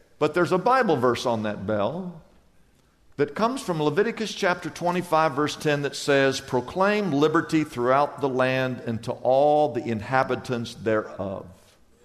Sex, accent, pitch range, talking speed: male, American, 145-215 Hz, 145 wpm